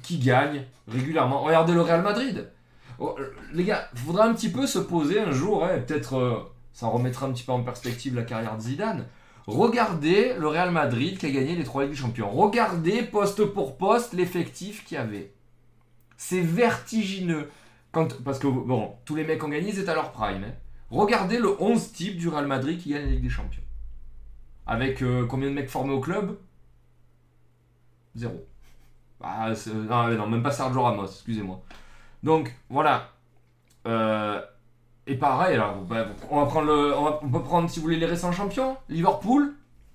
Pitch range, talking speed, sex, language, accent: 120-170 Hz, 185 wpm, male, French, French